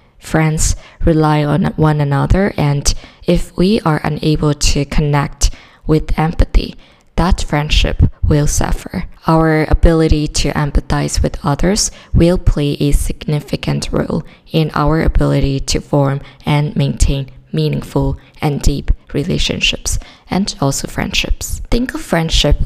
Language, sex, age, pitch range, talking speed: English, female, 20-39, 135-155 Hz, 120 wpm